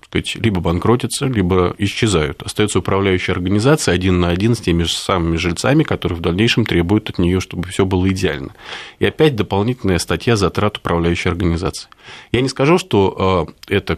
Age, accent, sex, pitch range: 30-49, native, male, 90-115 Hz